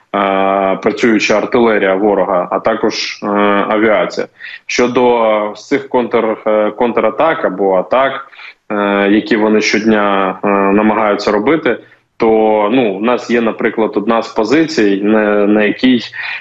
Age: 20-39